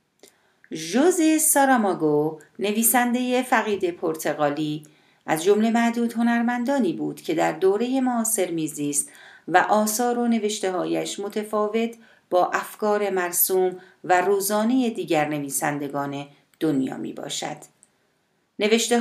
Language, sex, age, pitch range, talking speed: Persian, female, 40-59, 165-230 Hz, 100 wpm